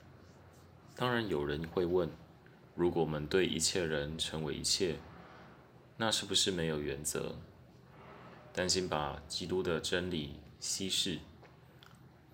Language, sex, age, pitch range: Chinese, male, 20-39, 75-90 Hz